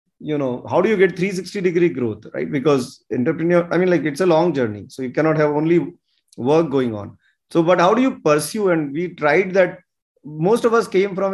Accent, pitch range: Indian, 130-175 Hz